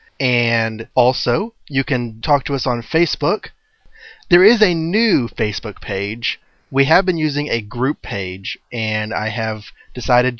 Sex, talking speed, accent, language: male, 150 wpm, American, English